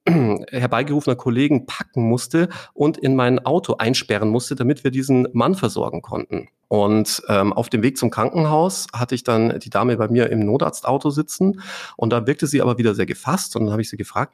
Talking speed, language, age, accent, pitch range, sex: 195 wpm, German, 40-59, German, 115-150 Hz, male